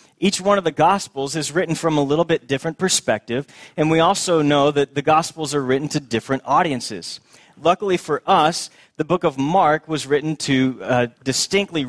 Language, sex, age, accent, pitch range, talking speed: English, male, 30-49, American, 130-160 Hz, 185 wpm